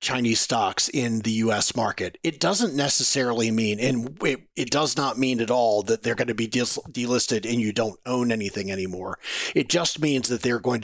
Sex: male